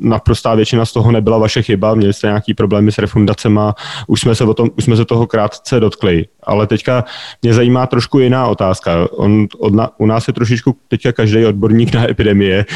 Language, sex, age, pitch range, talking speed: Czech, male, 30-49, 105-115 Hz, 180 wpm